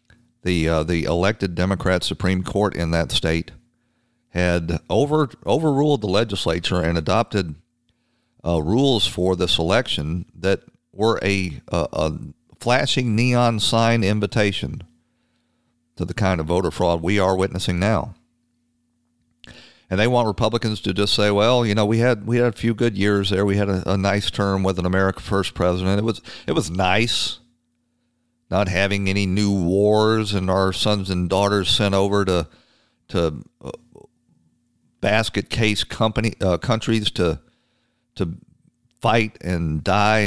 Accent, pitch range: American, 90-120 Hz